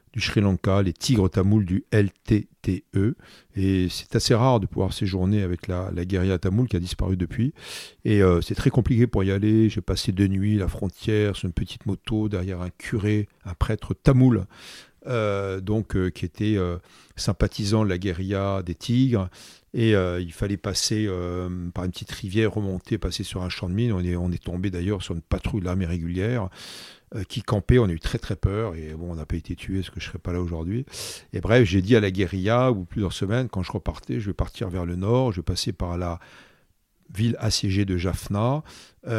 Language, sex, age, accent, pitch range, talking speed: French, male, 40-59, French, 90-110 Hz, 215 wpm